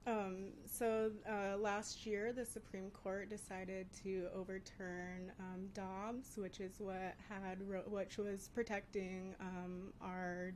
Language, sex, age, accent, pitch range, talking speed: English, female, 20-39, American, 180-200 Hz, 130 wpm